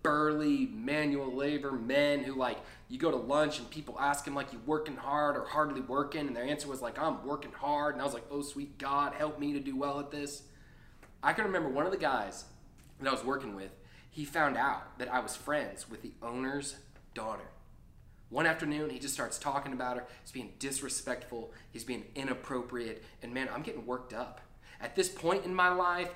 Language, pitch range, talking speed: English, 140-170 Hz, 210 wpm